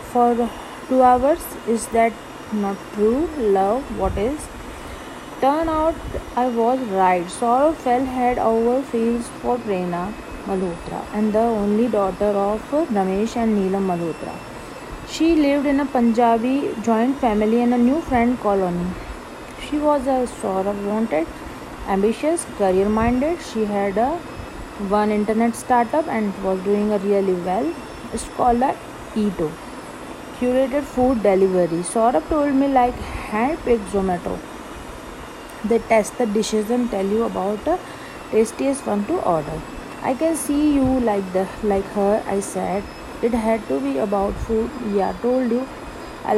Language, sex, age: Hindi, female, 30-49